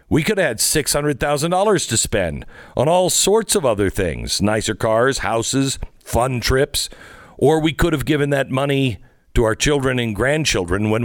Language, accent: English, American